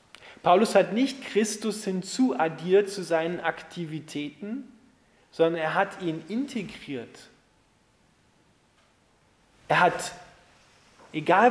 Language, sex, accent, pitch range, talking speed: German, male, German, 170-235 Hz, 85 wpm